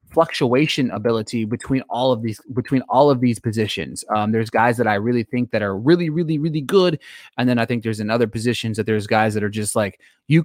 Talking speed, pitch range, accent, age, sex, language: 225 wpm, 110-140 Hz, American, 20-39, male, English